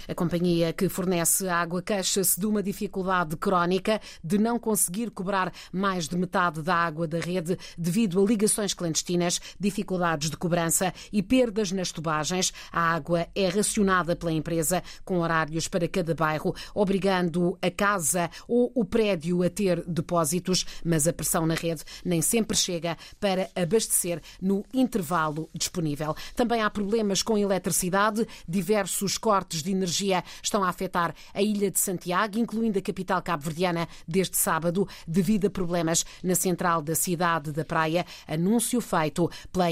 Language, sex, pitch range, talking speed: Portuguese, female, 170-210 Hz, 150 wpm